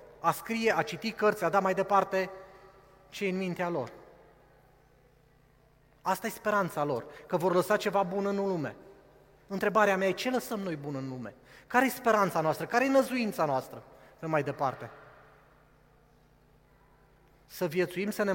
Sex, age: male, 30-49